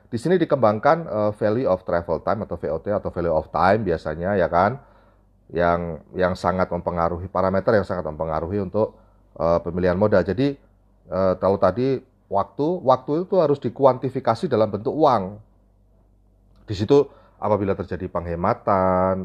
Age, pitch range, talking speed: 30-49, 90-115 Hz, 140 wpm